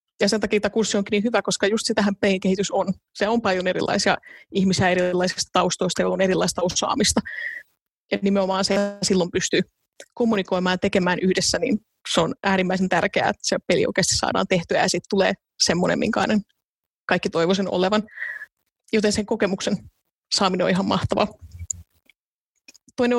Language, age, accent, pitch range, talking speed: Finnish, 20-39, native, 185-215 Hz, 155 wpm